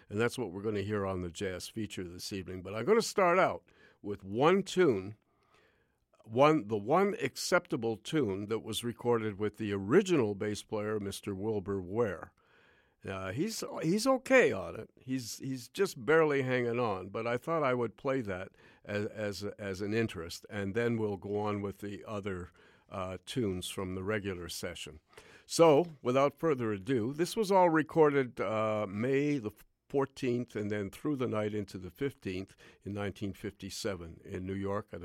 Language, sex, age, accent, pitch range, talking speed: English, male, 50-69, American, 95-125 Hz, 175 wpm